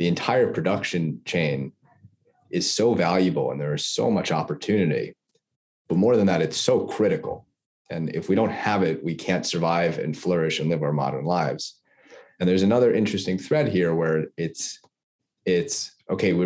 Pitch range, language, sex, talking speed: 80-95 Hz, English, male, 165 wpm